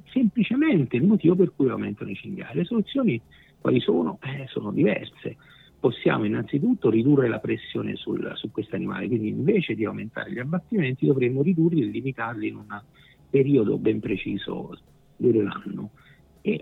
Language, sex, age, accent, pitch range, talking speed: Italian, male, 50-69, native, 125-180 Hz, 150 wpm